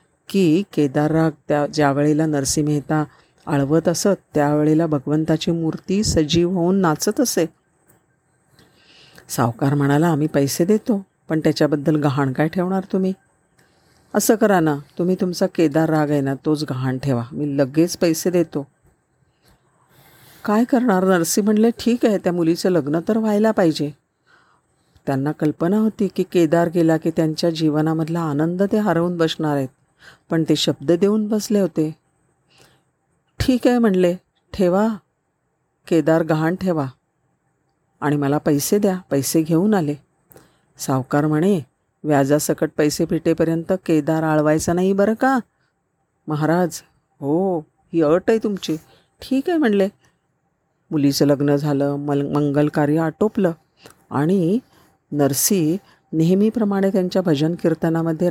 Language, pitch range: Marathi, 150-185 Hz